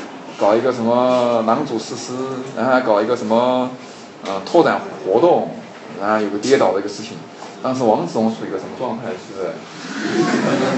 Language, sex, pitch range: Chinese, male, 115-180 Hz